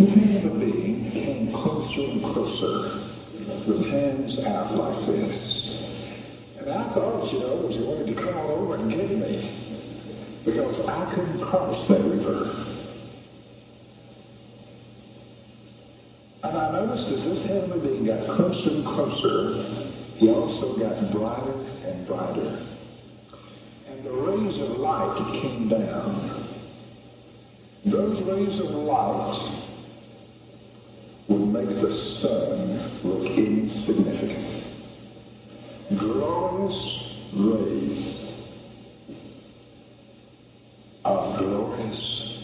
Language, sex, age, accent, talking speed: English, male, 60-79, American, 95 wpm